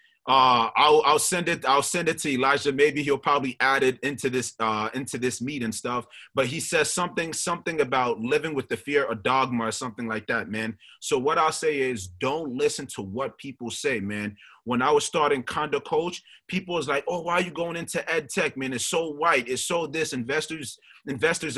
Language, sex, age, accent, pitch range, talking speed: English, male, 30-49, American, 130-170 Hz, 215 wpm